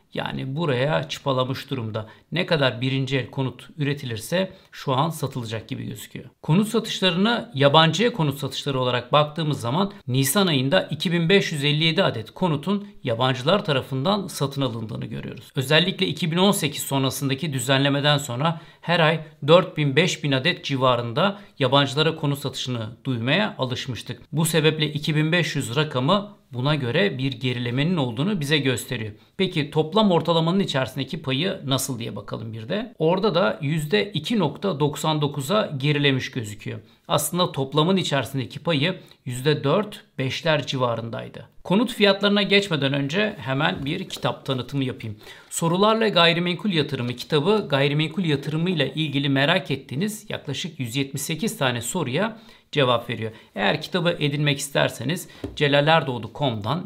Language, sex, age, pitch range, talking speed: Turkish, male, 60-79, 130-175 Hz, 115 wpm